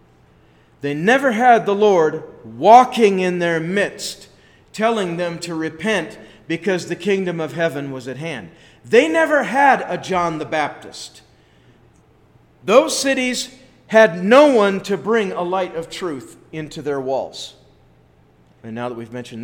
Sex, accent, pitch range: male, American, 125-165 Hz